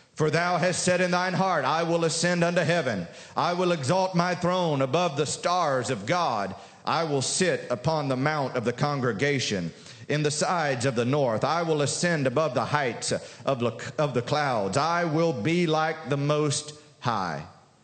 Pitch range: 125-165 Hz